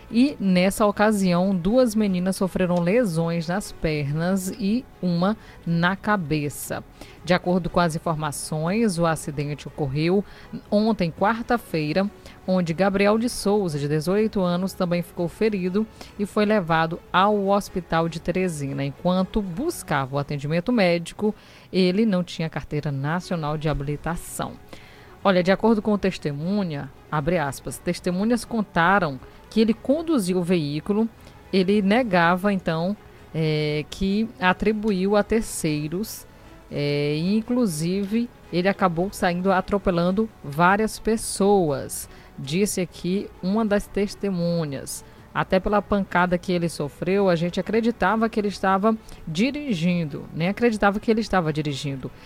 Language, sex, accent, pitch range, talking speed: Portuguese, female, Brazilian, 165-205 Hz, 120 wpm